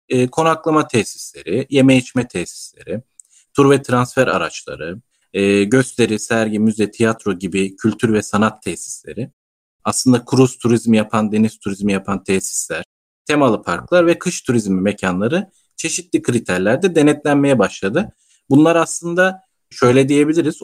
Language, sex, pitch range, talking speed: Turkish, male, 110-145 Hz, 115 wpm